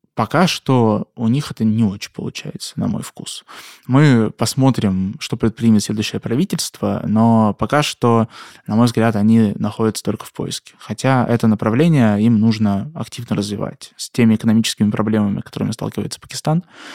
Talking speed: 150 wpm